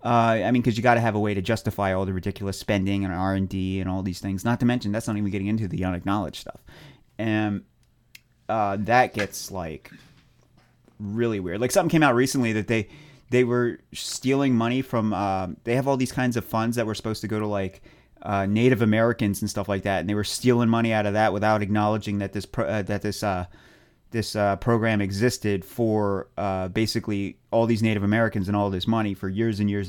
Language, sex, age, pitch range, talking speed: English, male, 30-49, 100-120 Hz, 225 wpm